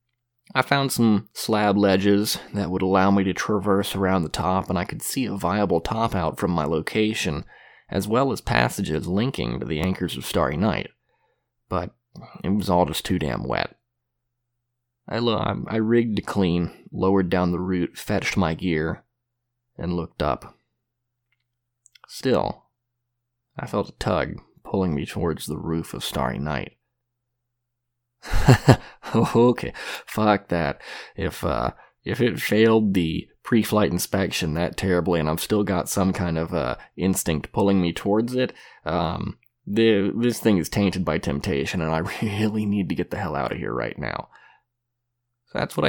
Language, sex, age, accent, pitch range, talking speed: English, male, 20-39, American, 90-120 Hz, 160 wpm